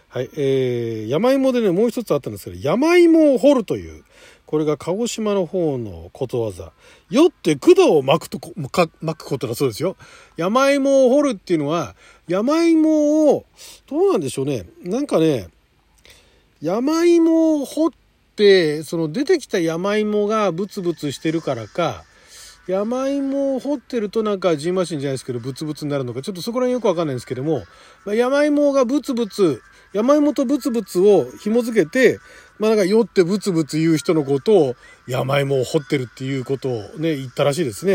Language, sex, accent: Japanese, male, native